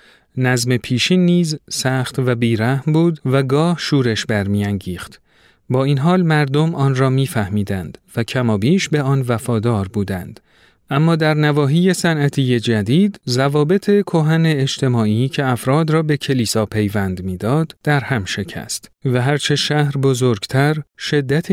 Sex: male